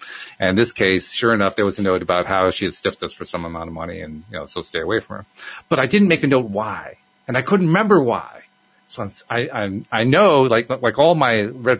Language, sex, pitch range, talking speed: English, male, 105-160 Hz, 260 wpm